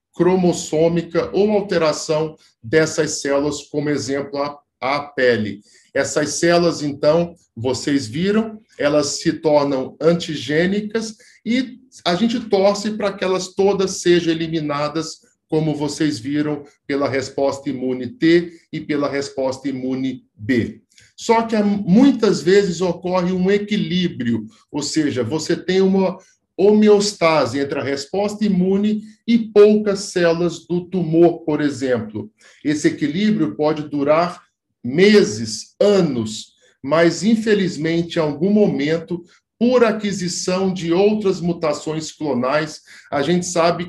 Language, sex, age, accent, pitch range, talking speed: Portuguese, male, 50-69, Brazilian, 140-190 Hz, 115 wpm